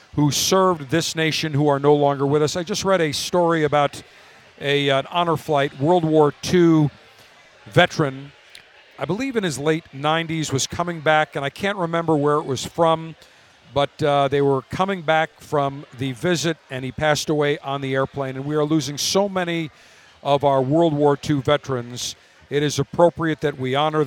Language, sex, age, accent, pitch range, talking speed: English, male, 50-69, American, 140-175 Hz, 185 wpm